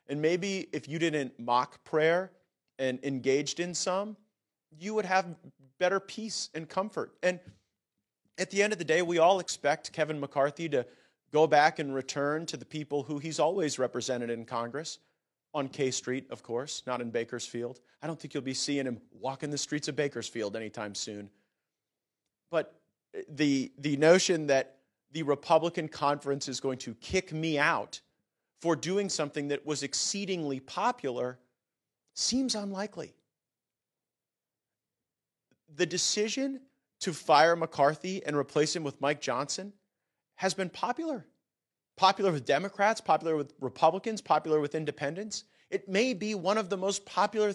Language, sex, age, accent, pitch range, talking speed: English, male, 40-59, American, 135-185 Hz, 150 wpm